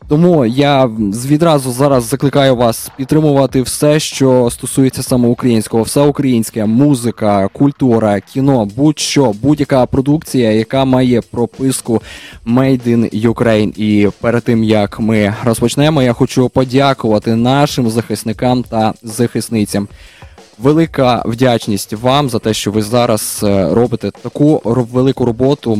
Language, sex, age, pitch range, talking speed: Ukrainian, male, 20-39, 115-145 Hz, 120 wpm